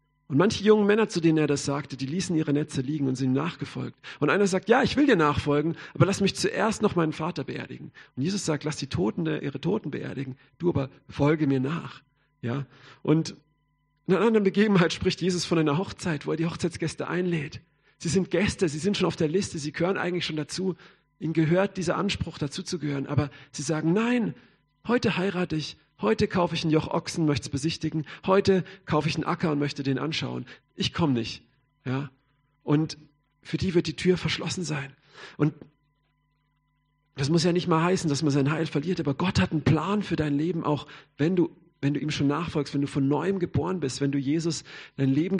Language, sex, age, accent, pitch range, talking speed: German, male, 40-59, German, 145-175 Hz, 210 wpm